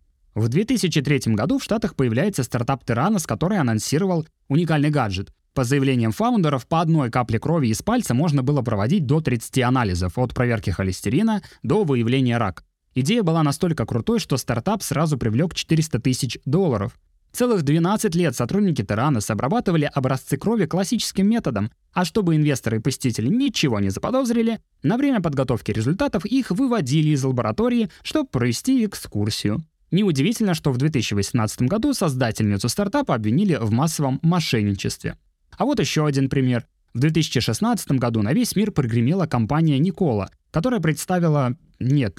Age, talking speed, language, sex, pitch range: 20-39, 145 wpm, Russian, male, 120-185 Hz